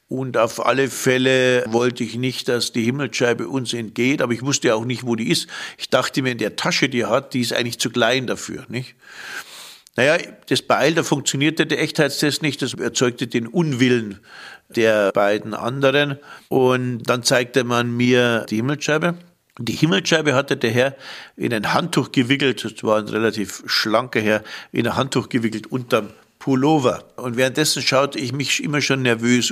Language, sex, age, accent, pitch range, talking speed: German, male, 50-69, German, 115-140 Hz, 180 wpm